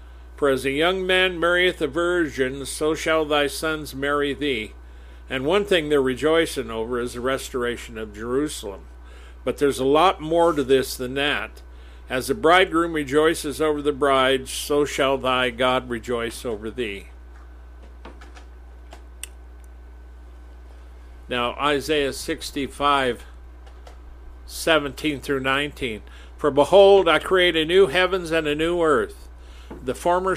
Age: 50-69